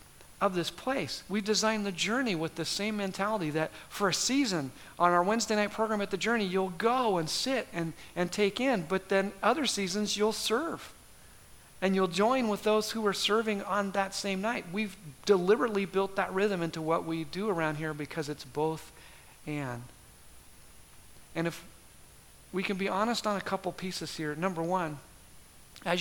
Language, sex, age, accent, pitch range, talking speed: English, male, 50-69, American, 150-195 Hz, 180 wpm